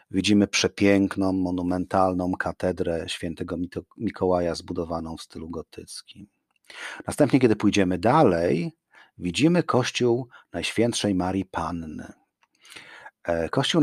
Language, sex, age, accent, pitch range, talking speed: Polish, male, 40-59, native, 95-120 Hz, 85 wpm